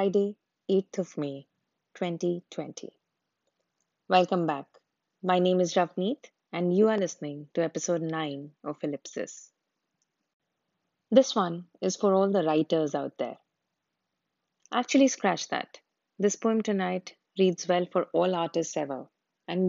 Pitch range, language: 155-190 Hz, English